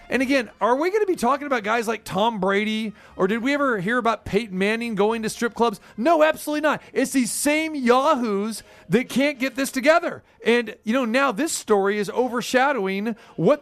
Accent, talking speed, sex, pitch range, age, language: American, 205 wpm, male, 215-280 Hz, 40-59, English